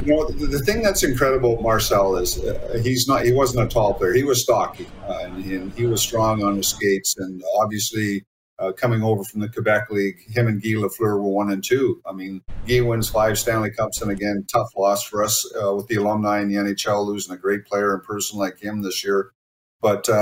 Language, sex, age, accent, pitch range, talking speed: English, male, 50-69, American, 100-115 Hz, 230 wpm